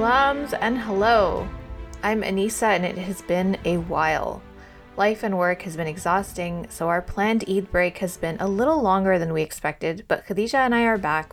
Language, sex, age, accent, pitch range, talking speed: English, female, 30-49, American, 165-210 Hz, 190 wpm